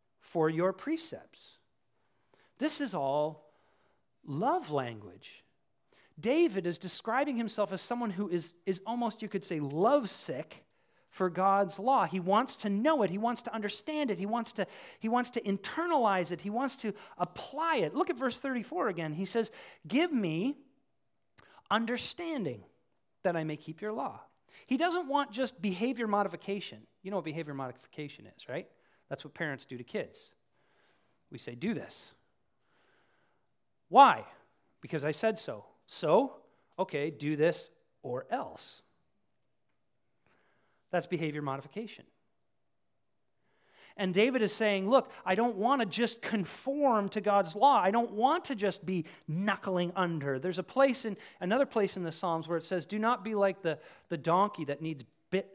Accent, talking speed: American, 155 wpm